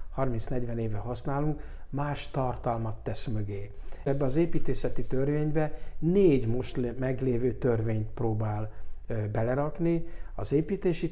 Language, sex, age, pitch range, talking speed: Hungarian, male, 60-79, 115-140 Hz, 105 wpm